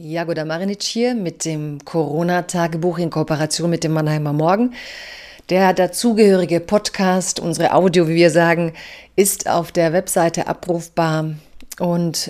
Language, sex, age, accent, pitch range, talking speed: German, female, 30-49, German, 165-190 Hz, 125 wpm